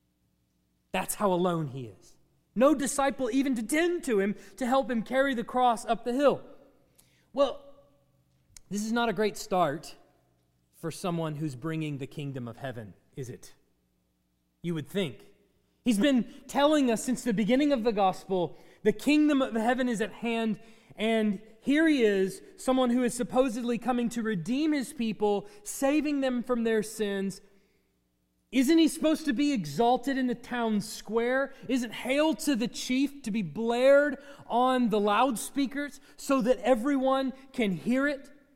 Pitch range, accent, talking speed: 165-255 Hz, American, 160 wpm